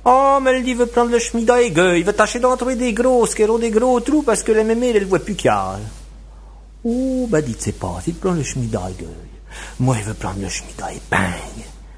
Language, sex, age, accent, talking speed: French, male, 60-79, French, 245 wpm